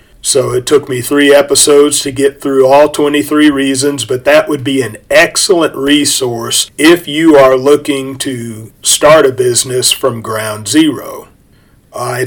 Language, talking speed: English, 150 wpm